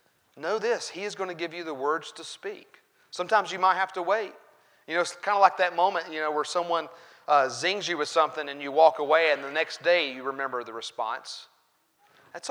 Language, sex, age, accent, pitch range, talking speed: English, male, 30-49, American, 140-175 Hz, 230 wpm